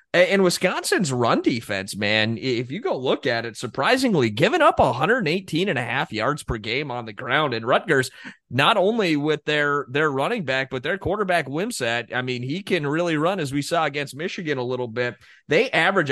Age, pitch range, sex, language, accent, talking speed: 30-49, 135-185 Hz, male, English, American, 195 wpm